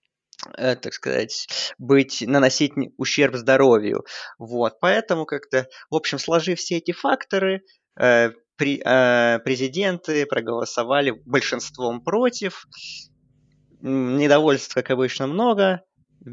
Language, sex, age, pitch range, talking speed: Russian, male, 20-39, 120-165 Hz, 90 wpm